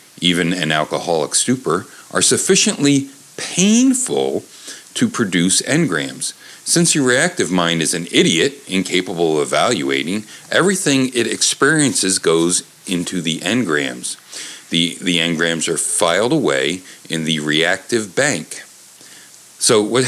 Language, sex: English, male